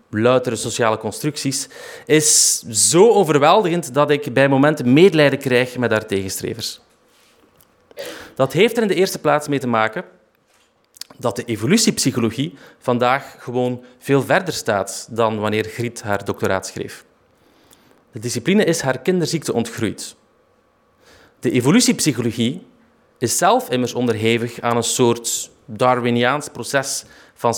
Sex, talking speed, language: male, 125 wpm, Dutch